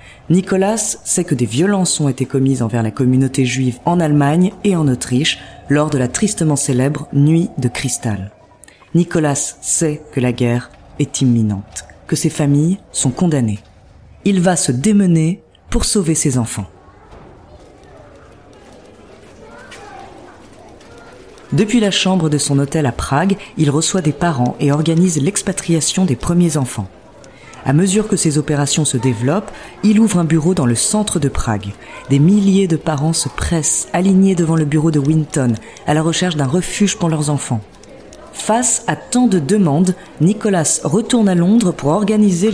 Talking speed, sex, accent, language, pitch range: 155 wpm, female, French, French, 135-185 Hz